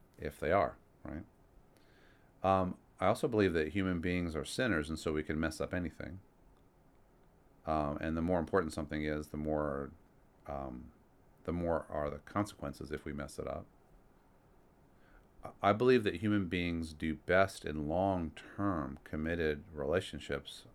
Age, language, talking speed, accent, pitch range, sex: 40-59, English, 150 wpm, American, 75-90 Hz, male